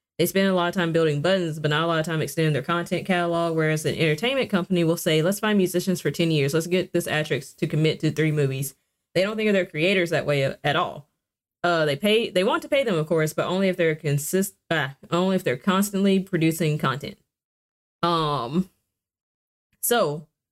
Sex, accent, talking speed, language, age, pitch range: female, American, 215 wpm, English, 20-39, 150-185 Hz